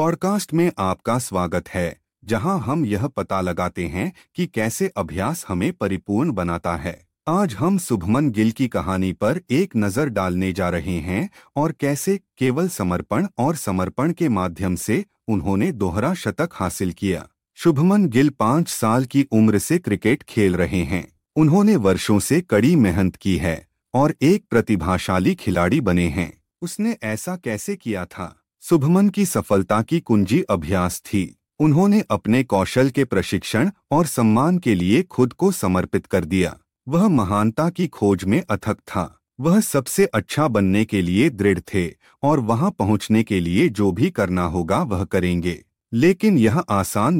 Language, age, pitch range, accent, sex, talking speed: Hindi, 30-49, 95-155 Hz, native, male, 160 wpm